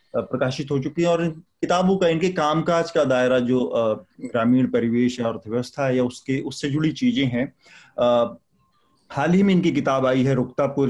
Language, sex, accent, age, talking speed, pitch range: English, male, Indian, 30-49, 165 wpm, 125-150 Hz